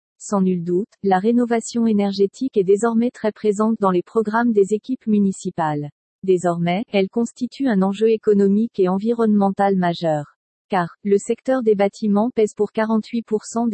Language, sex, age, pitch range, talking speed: French, female, 40-59, 195-225 Hz, 145 wpm